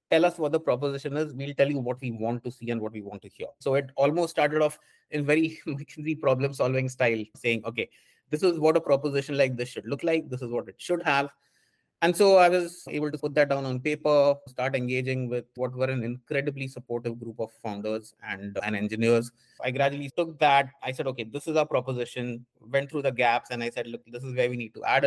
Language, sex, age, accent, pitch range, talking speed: English, male, 30-49, Indian, 120-145 Hz, 235 wpm